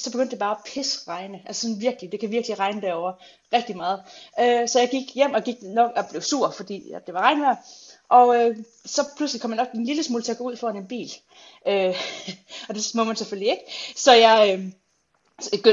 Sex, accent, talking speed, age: female, native, 205 wpm, 30-49